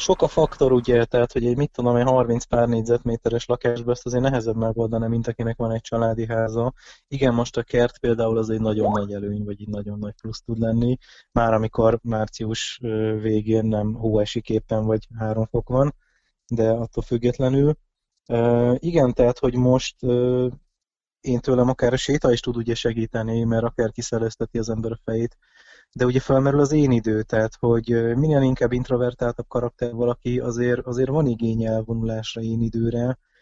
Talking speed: 170 wpm